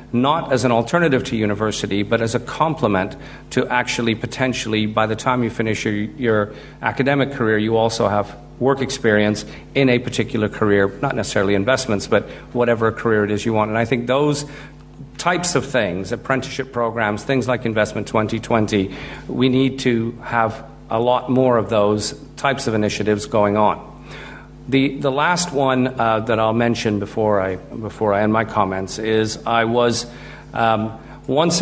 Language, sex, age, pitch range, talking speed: English, male, 50-69, 110-130 Hz, 165 wpm